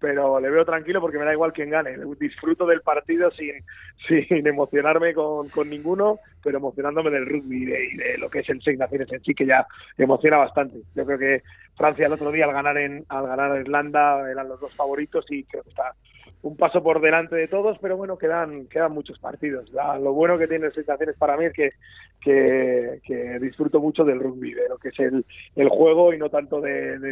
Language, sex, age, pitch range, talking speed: Spanish, male, 30-49, 140-165 Hz, 210 wpm